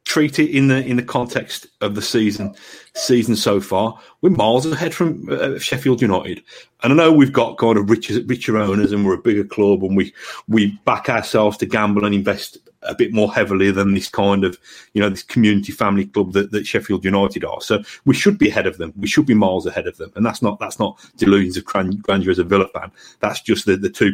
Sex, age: male, 40-59